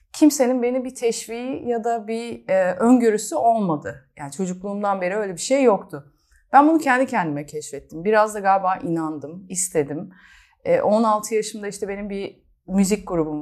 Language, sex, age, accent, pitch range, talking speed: Turkish, female, 30-49, native, 165-225 Hz, 155 wpm